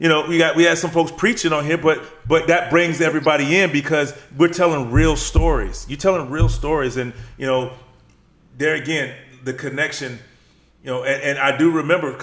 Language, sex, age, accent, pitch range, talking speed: English, male, 30-49, American, 130-155 Hz, 195 wpm